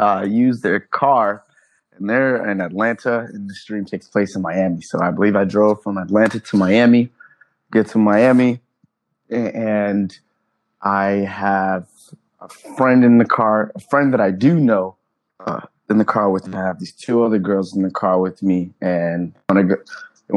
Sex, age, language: male, 20-39, English